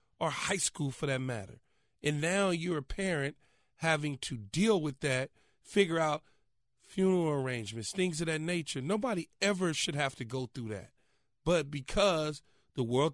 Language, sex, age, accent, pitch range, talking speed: English, male, 40-59, American, 130-160 Hz, 165 wpm